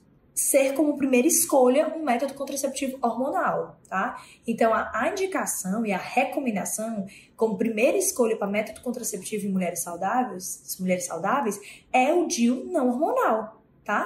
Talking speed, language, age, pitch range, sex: 135 wpm, Portuguese, 10-29, 215-275 Hz, female